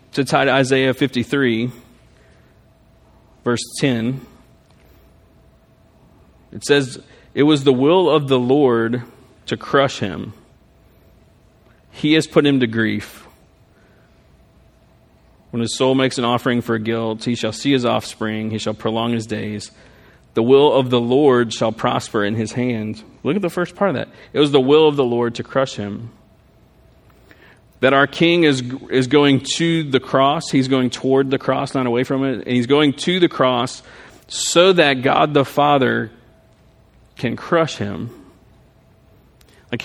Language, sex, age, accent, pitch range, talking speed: English, male, 40-59, American, 115-140 Hz, 155 wpm